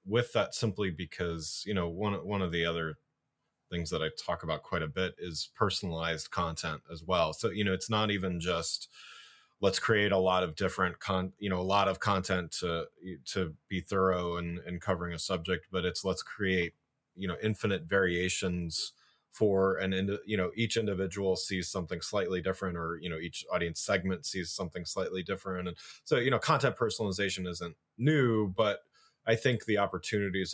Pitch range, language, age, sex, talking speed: 90-100 Hz, English, 30-49, male, 185 wpm